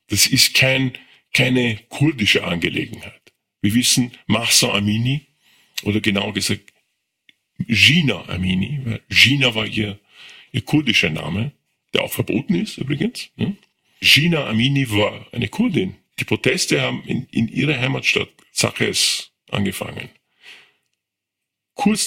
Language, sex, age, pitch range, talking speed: German, male, 50-69, 110-130 Hz, 115 wpm